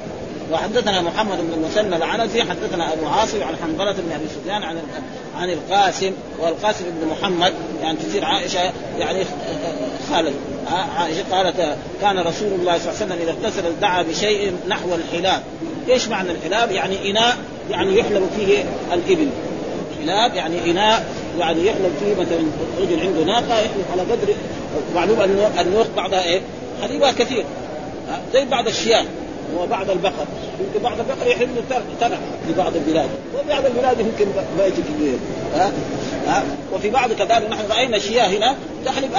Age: 30-49